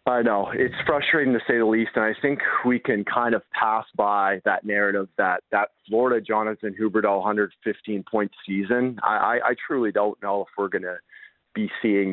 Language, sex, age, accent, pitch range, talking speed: English, male, 30-49, American, 105-130 Hz, 190 wpm